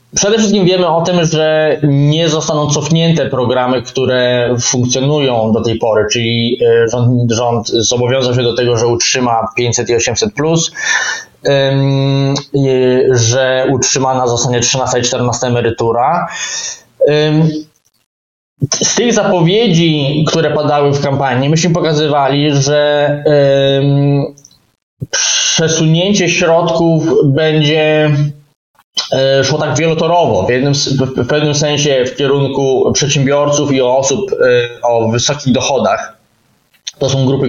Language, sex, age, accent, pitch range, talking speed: Polish, male, 20-39, native, 125-150 Hz, 105 wpm